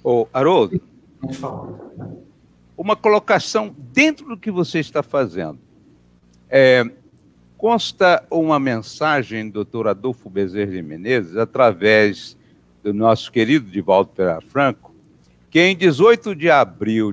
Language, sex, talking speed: Portuguese, male, 100 wpm